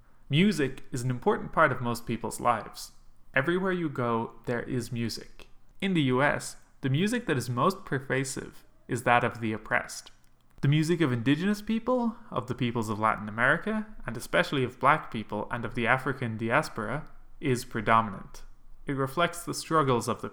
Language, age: English, 20-39